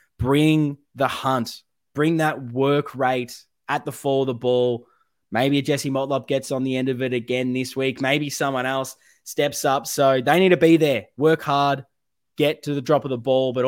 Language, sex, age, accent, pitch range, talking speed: English, male, 20-39, Australian, 120-145 Hz, 205 wpm